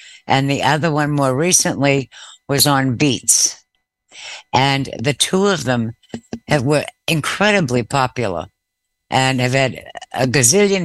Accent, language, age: American, English, 60-79